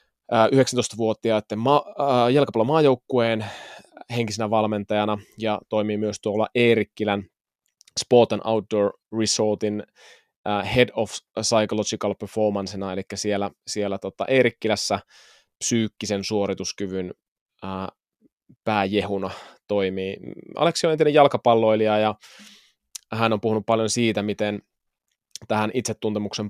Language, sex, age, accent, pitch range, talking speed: Finnish, male, 20-39, native, 100-115 Hz, 90 wpm